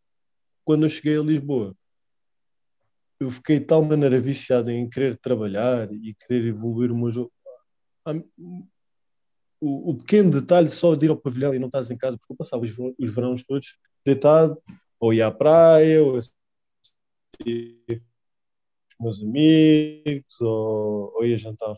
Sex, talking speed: male, 150 wpm